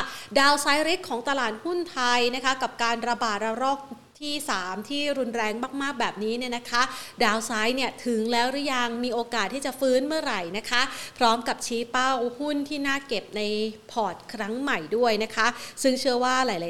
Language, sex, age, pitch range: Thai, female, 30-49, 215-265 Hz